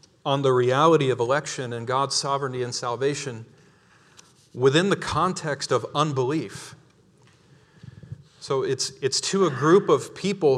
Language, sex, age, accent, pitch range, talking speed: English, male, 40-59, American, 120-150 Hz, 130 wpm